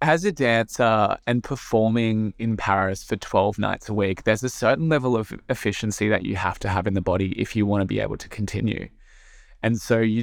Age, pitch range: 20-39, 105-120 Hz